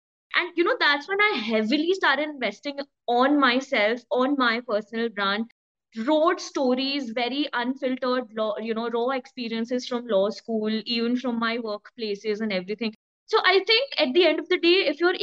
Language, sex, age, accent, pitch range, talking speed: English, female, 20-39, Indian, 235-330 Hz, 170 wpm